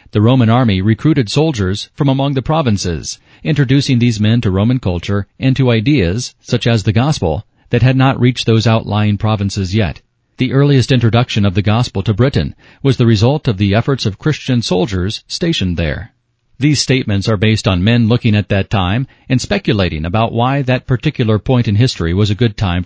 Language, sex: English, male